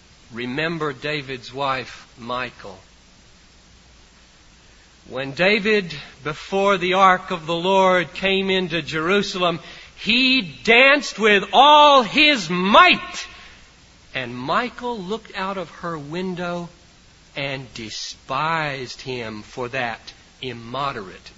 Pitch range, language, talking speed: 140-215 Hz, English, 95 wpm